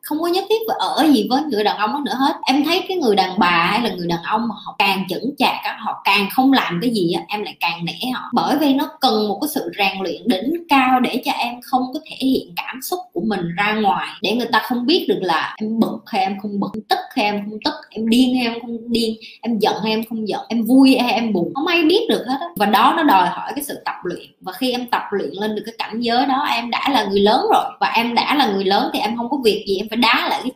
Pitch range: 205-275 Hz